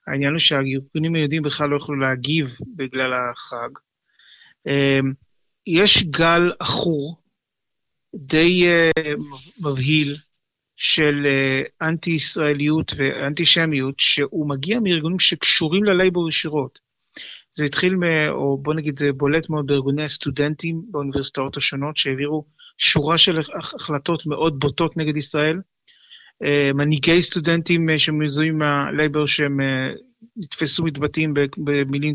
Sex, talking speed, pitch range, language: male, 95 wpm, 140-165 Hz, Hebrew